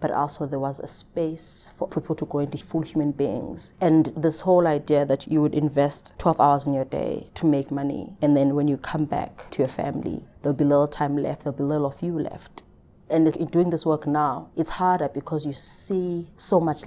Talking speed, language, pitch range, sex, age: 225 wpm, English, 145-165 Hz, female, 20-39